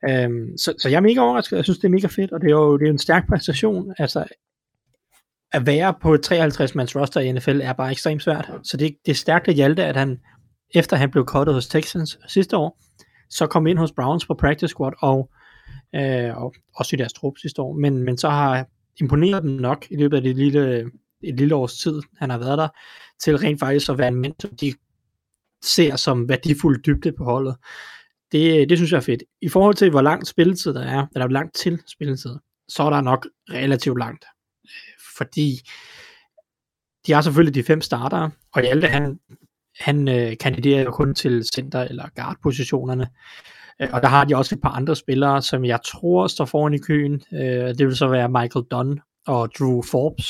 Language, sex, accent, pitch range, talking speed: Danish, male, native, 130-160 Hz, 205 wpm